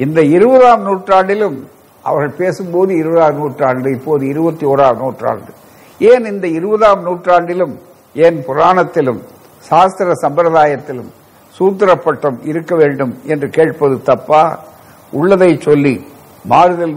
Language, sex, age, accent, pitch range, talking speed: Tamil, male, 60-79, native, 140-175 Hz, 100 wpm